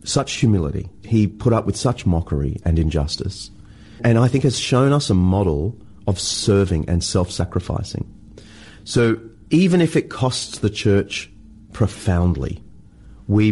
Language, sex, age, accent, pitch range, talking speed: English, male, 30-49, Australian, 90-110 Hz, 140 wpm